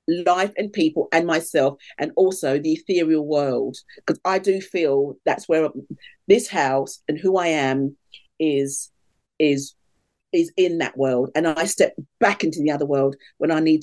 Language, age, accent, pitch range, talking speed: English, 40-59, British, 140-195 Hz, 170 wpm